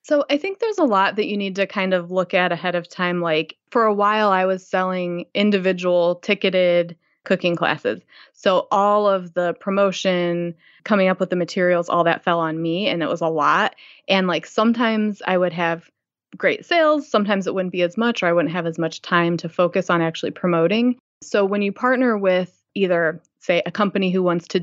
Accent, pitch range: American, 170-205 Hz